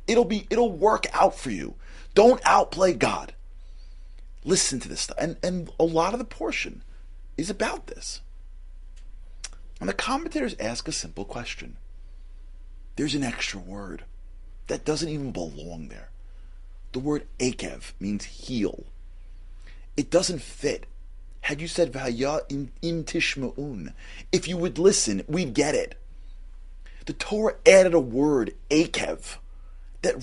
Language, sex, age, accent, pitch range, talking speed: English, male, 40-59, American, 90-145 Hz, 135 wpm